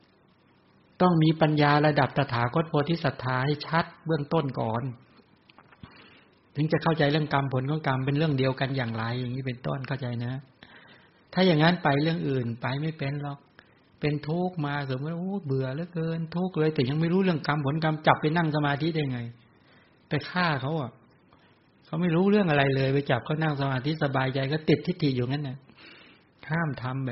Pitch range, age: 130-160 Hz, 60-79